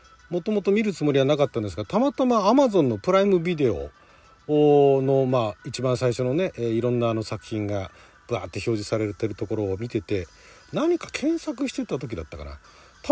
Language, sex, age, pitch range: Japanese, male, 40-59, 125-195 Hz